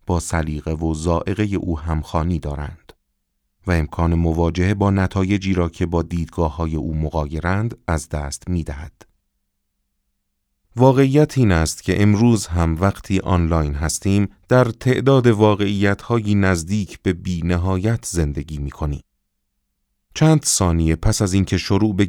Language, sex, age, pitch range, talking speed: Persian, male, 30-49, 80-105 Hz, 135 wpm